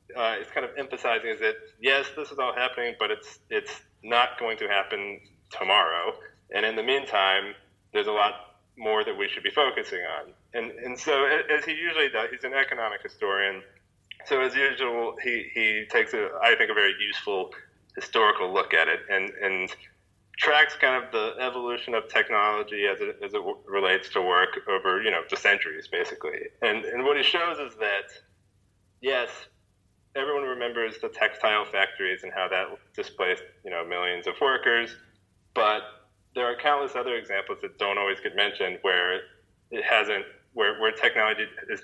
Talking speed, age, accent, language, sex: 175 wpm, 30-49, American, English, male